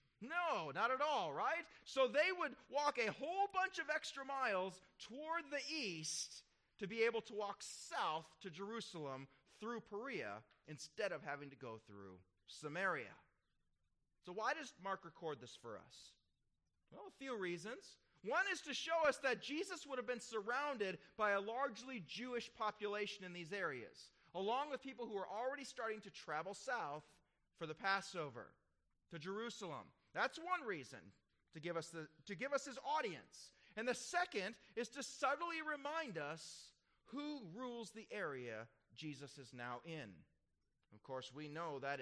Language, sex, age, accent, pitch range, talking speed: English, male, 30-49, American, 165-265 Hz, 165 wpm